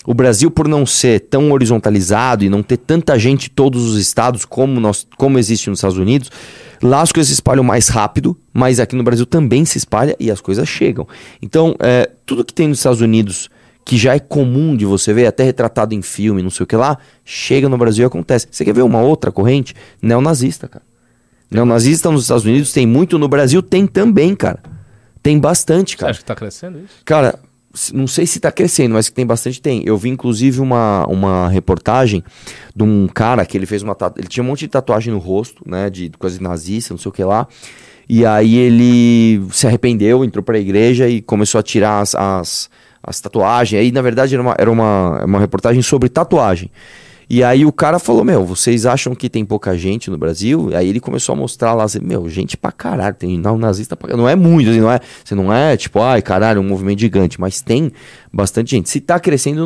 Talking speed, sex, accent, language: 220 wpm, male, Brazilian, Portuguese